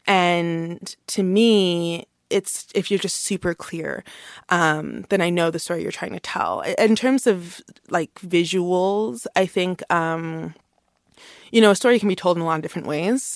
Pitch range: 160-190 Hz